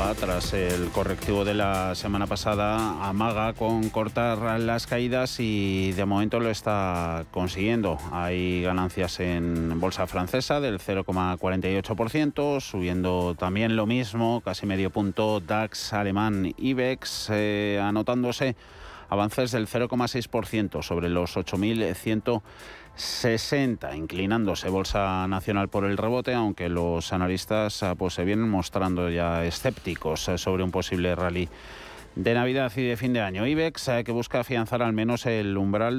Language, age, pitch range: Spanish, 30-49, 90-110 Hz